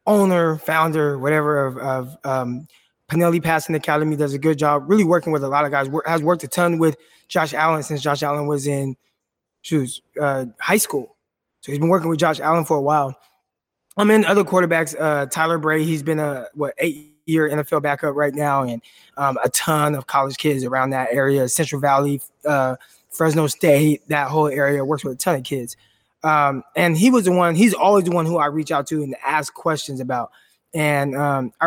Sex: male